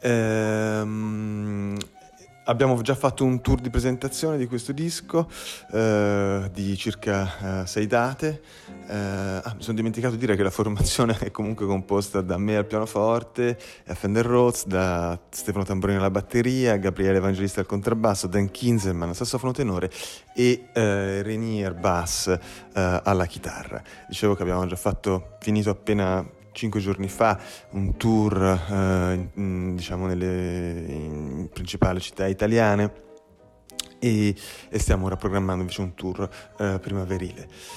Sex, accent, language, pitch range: male, native, Italian, 95-115 Hz